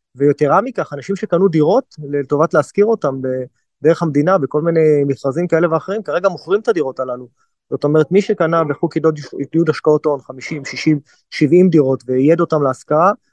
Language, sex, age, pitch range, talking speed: Hebrew, male, 30-49, 145-170 Hz, 160 wpm